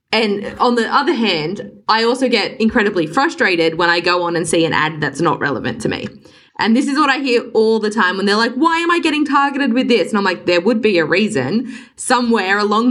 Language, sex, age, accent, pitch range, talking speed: English, female, 20-39, Australian, 175-245 Hz, 240 wpm